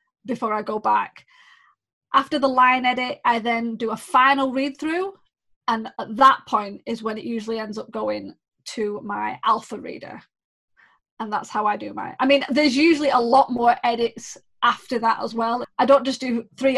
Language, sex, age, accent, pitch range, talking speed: English, female, 20-39, British, 225-270 Hz, 190 wpm